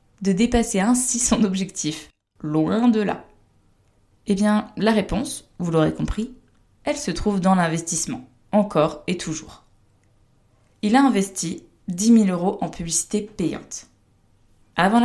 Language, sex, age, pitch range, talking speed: French, female, 20-39, 145-205 Hz, 130 wpm